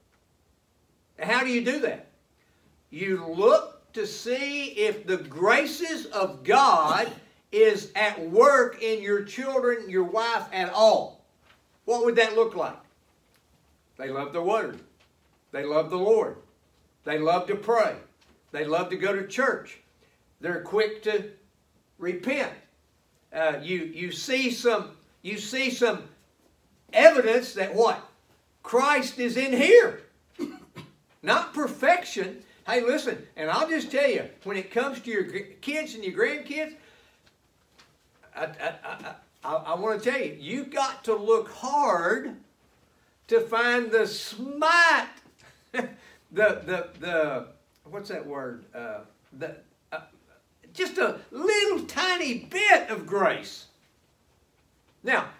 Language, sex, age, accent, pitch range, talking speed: English, male, 60-79, American, 185-265 Hz, 130 wpm